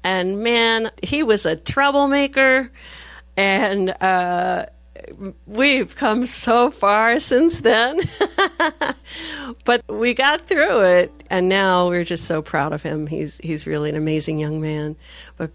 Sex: female